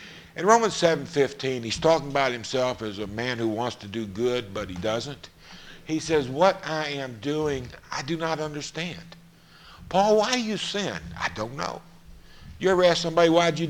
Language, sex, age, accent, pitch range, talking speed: English, male, 60-79, American, 135-190 Hz, 190 wpm